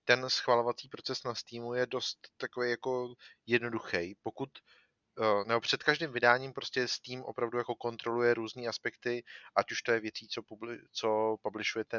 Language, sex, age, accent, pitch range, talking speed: Czech, male, 30-49, native, 105-125 Hz, 150 wpm